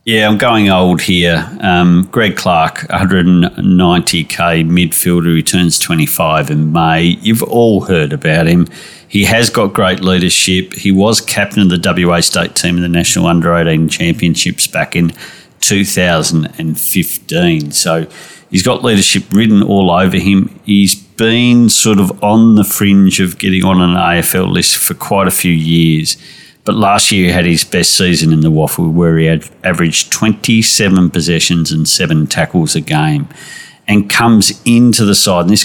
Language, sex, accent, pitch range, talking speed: English, male, Australian, 85-105 Hz, 160 wpm